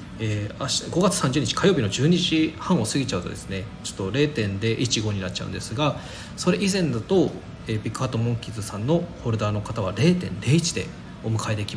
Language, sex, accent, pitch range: Japanese, male, native, 105-150 Hz